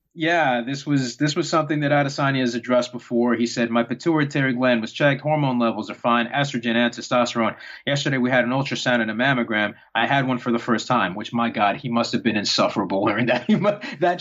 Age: 30-49